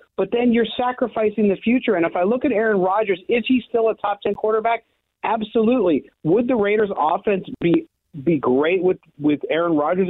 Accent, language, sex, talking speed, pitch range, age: American, English, male, 185 wpm, 175-225 Hz, 40-59